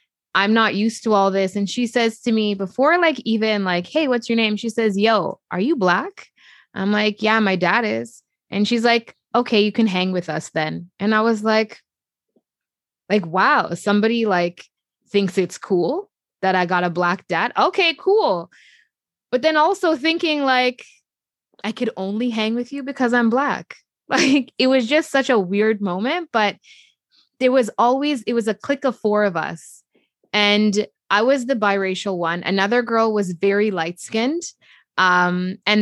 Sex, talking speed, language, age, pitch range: female, 180 wpm, English, 20-39, 195-245 Hz